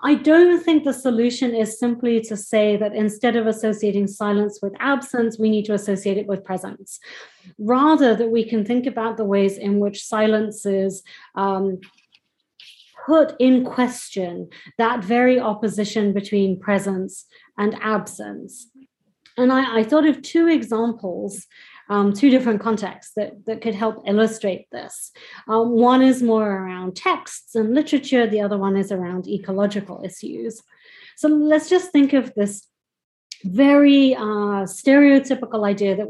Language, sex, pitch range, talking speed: English, female, 200-245 Hz, 150 wpm